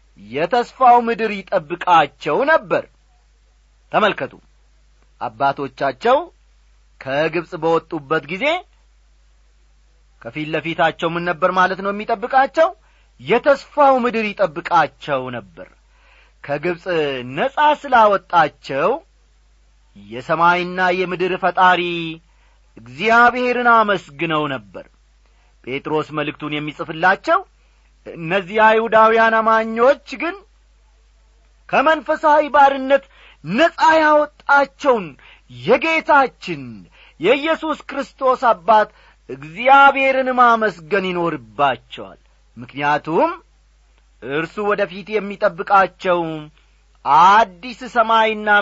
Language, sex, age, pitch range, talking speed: Amharic, male, 40-59, 150-245 Hz, 65 wpm